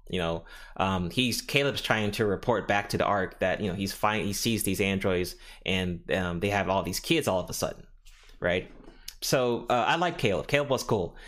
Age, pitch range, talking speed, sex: 20-39, 95-120 Hz, 220 wpm, male